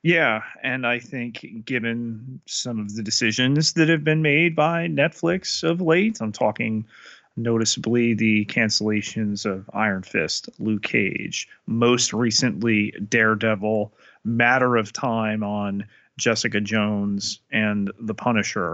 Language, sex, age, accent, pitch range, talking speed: English, male, 30-49, American, 110-135 Hz, 125 wpm